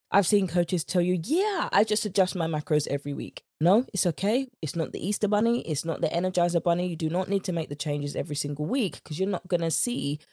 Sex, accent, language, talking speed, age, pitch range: female, British, English, 250 wpm, 20-39, 145-190 Hz